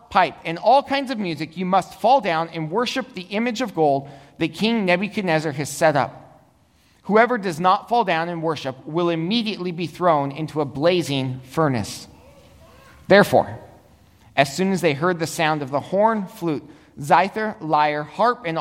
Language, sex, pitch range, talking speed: English, male, 140-195 Hz, 170 wpm